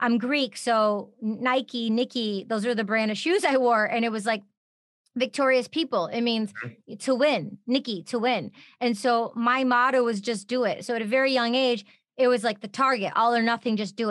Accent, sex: American, female